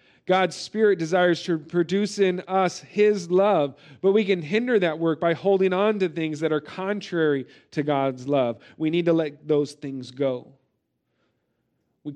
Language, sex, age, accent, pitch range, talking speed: English, male, 40-59, American, 140-175 Hz, 170 wpm